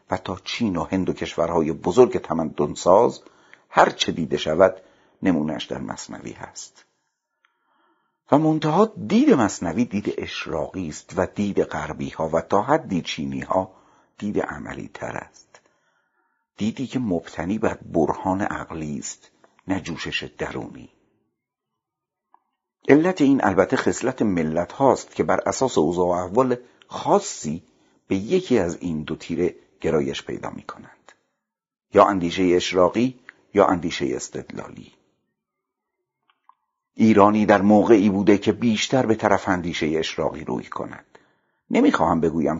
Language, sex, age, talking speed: Persian, male, 60-79, 125 wpm